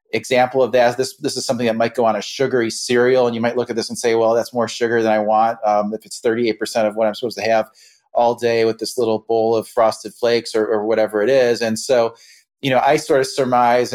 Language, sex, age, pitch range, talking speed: English, male, 30-49, 115-130 Hz, 265 wpm